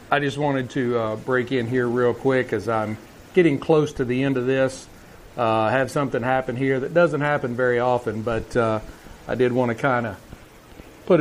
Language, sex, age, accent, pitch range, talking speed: English, male, 40-59, American, 115-140 Hz, 205 wpm